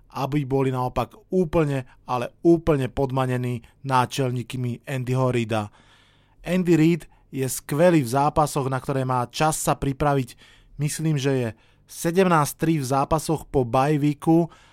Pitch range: 130-155 Hz